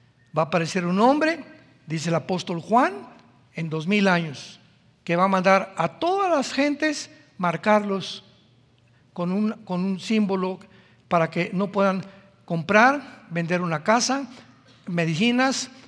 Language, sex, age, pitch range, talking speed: Spanish, male, 60-79, 170-245 Hz, 130 wpm